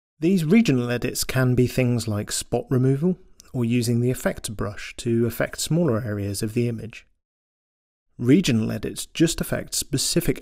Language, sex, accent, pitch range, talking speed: English, male, British, 110-155 Hz, 150 wpm